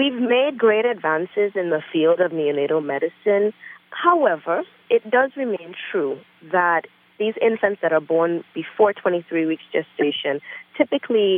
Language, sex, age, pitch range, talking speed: English, female, 30-49, 160-215 Hz, 135 wpm